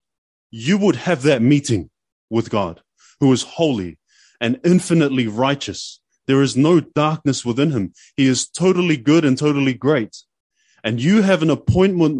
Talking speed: 150 wpm